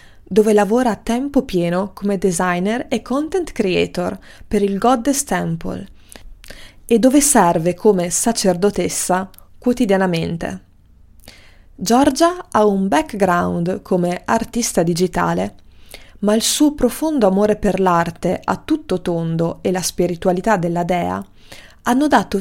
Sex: female